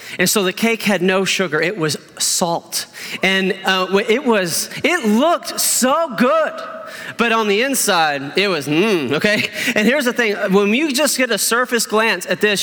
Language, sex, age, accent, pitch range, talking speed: English, male, 30-49, American, 185-235 Hz, 185 wpm